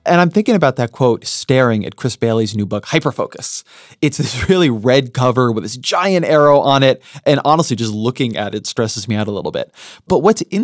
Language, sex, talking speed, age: English, male, 220 wpm, 30-49